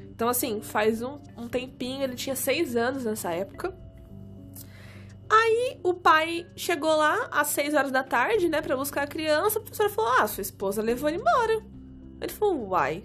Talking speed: 180 wpm